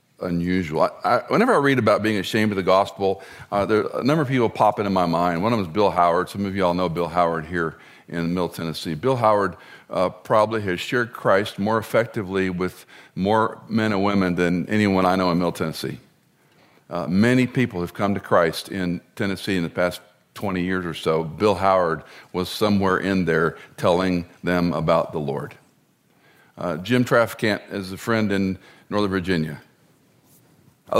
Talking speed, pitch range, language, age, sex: 180 wpm, 95-145 Hz, English, 50-69, male